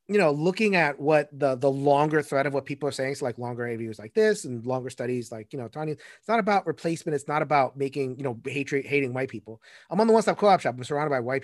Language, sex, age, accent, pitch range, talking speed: English, male, 30-49, American, 130-165 Hz, 270 wpm